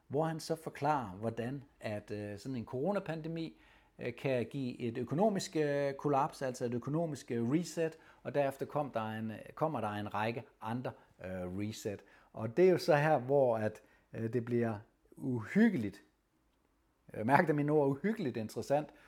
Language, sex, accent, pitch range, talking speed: Danish, male, native, 115-150 Hz, 140 wpm